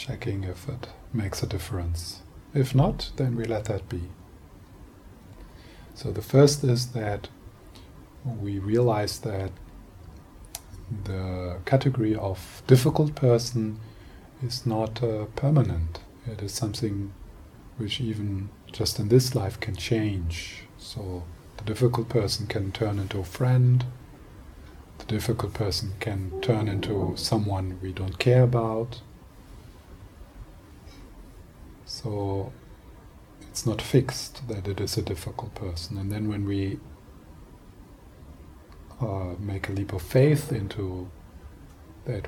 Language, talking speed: English, 120 wpm